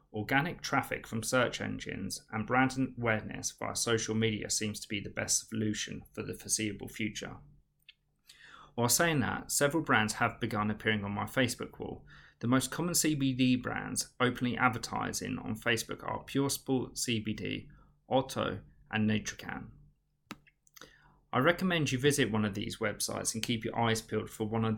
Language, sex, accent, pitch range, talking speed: English, male, British, 110-130 Hz, 155 wpm